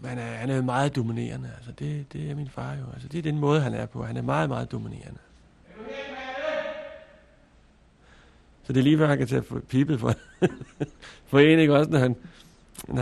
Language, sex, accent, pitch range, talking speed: Danish, male, native, 120-145 Hz, 200 wpm